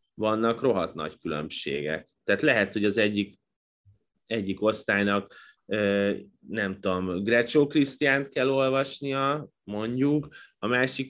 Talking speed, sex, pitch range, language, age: 115 wpm, male, 95-110 Hz, Hungarian, 30-49